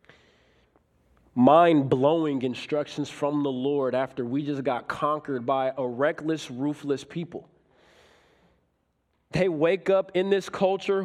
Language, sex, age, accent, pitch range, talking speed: English, male, 20-39, American, 155-195 Hz, 115 wpm